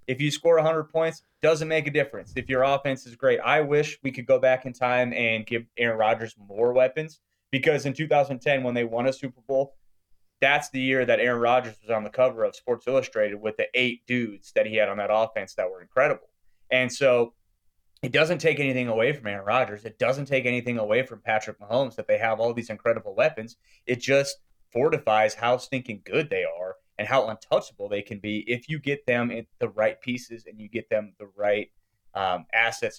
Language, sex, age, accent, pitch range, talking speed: English, male, 30-49, American, 115-140 Hz, 215 wpm